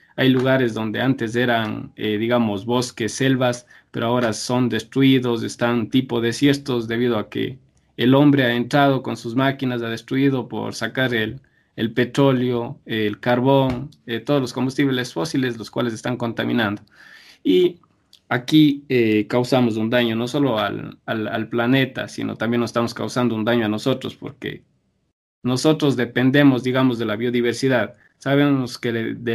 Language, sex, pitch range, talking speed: Spanish, male, 115-135 Hz, 155 wpm